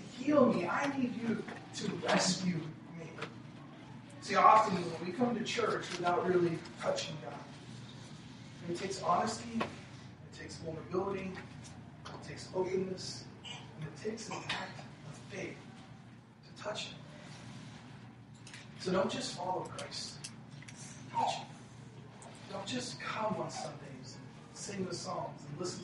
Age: 40-59